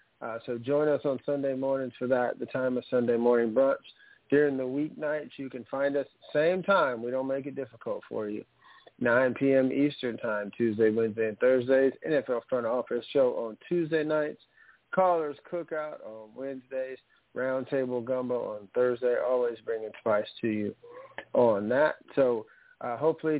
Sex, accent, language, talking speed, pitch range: male, American, English, 165 wpm, 120-140 Hz